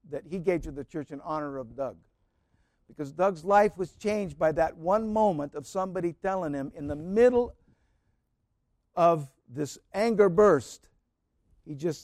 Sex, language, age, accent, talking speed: male, English, 60-79, American, 160 wpm